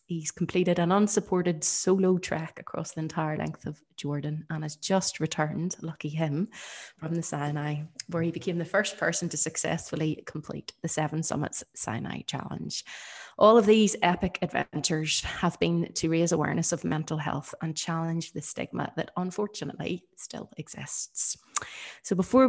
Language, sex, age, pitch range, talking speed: English, female, 20-39, 155-175 Hz, 155 wpm